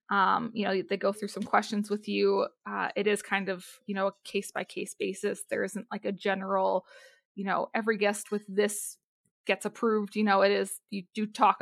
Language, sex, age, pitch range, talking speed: English, female, 20-39, 200-225 Hz, 215 wpm